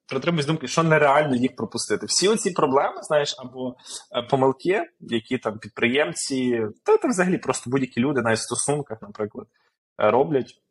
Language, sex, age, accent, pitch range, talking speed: Ukrainian, male, 20-39, native, 110-145 Hz, 140 wpm